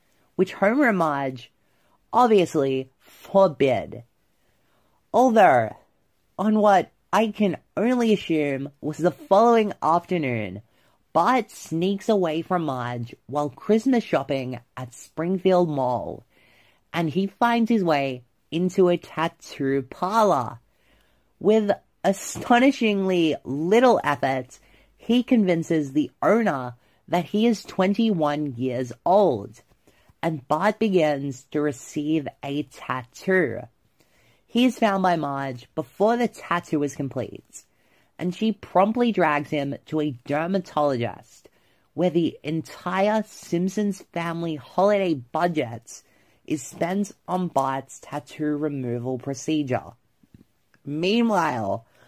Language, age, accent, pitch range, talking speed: English, 30-49, American, 135-195 Hz, 105 wpm